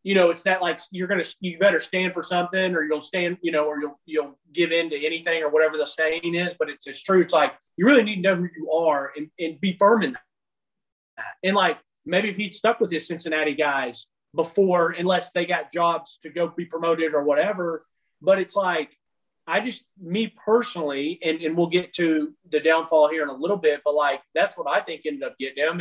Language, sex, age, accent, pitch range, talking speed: English, male, 30-49, American, 155-195 Hz, 240 wpm